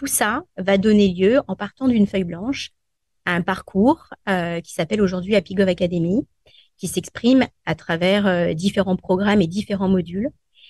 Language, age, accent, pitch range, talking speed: French, 30-49, French, 185-230 Hz, 170 wpm